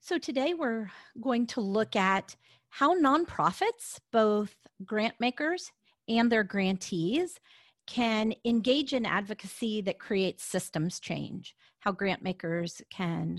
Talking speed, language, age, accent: 110 wpm, English, 40-59, American